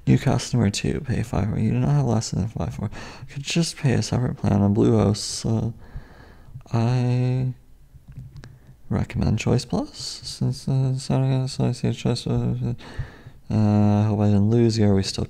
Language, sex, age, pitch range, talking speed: English, male, 30-49, 100-130 Hz, 150 wpm